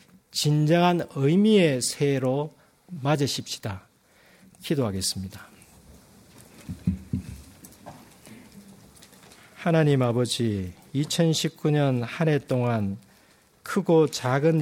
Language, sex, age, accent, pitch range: Korean, male, 40-59, native, 120-160 Hz